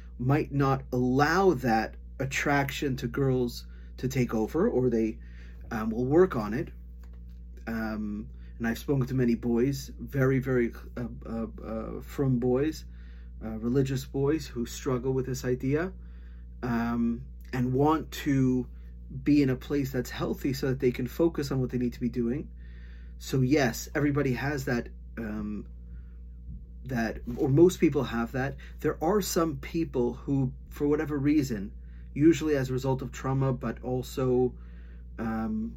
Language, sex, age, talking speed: English, male, 30-49, 150 wpm